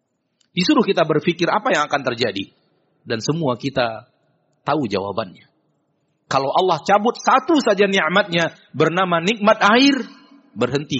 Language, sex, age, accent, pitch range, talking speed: Indonesian, male, 40-59, native, 130-200 Hz, 120 wpm